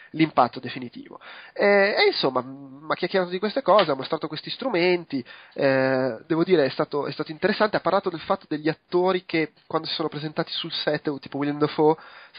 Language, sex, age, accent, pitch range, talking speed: Italian, male, 30-49, native, 130-165 Hz, 190 wpm